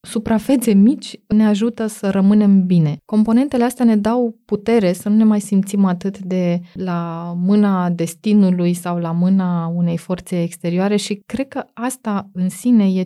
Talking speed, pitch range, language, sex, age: 160 wpm, 175-210 Hz, Romanian, female, 20-39